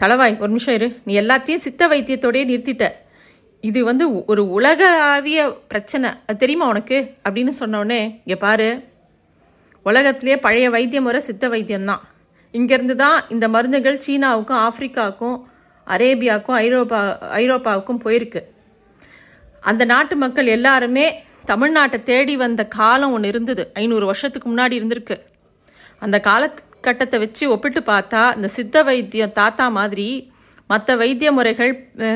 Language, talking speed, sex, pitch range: Tamil, 120 wpm, female, 225-270 Hz